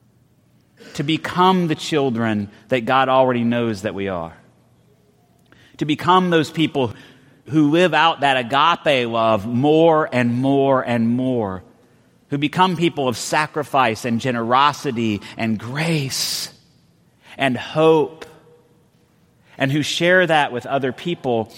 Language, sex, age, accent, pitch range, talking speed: English, male, 30-49, American, 130-195 Hz, 120 wpm